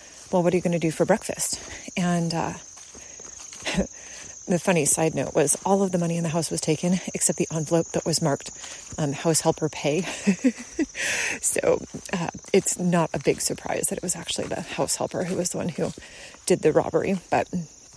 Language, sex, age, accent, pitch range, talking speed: English, female, 30-49, American, 170-200 Hz, 195 wpm